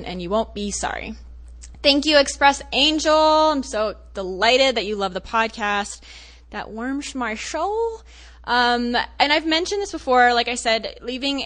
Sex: female